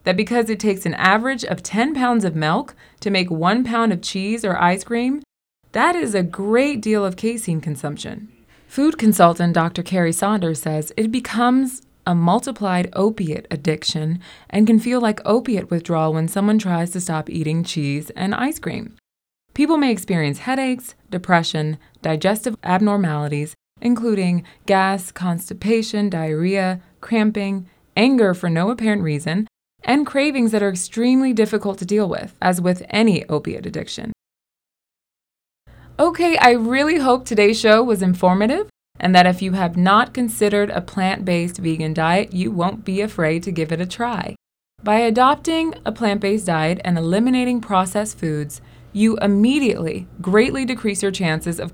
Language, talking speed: English, 150 wpm